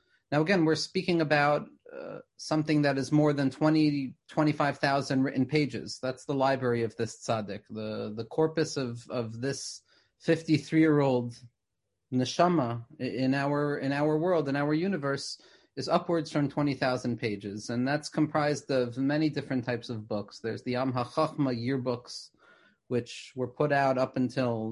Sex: male